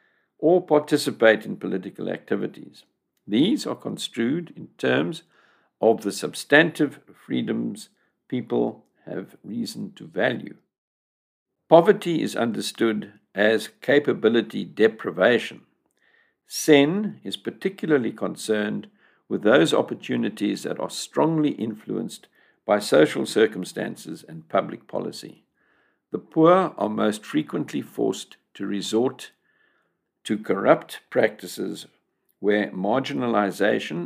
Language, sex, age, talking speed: English, male, 60-79, 95 wpm